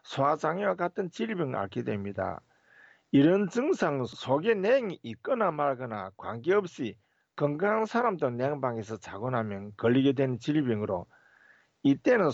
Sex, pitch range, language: male, 115-185 Hz, Korean